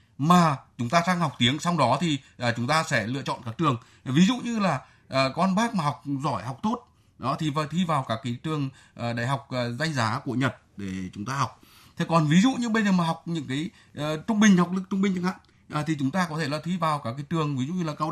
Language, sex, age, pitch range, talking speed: Vietnamese, male, 20-39, 115-165 Hz, 260 wpm